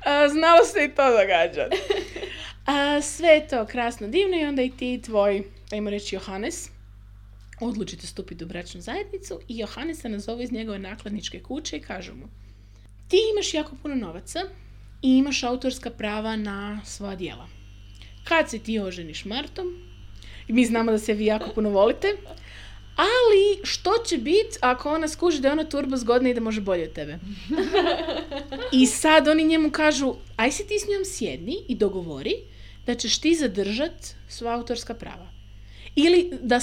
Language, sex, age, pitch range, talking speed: Croatian, female, 20-39, 170-285 Hz, 165 wpm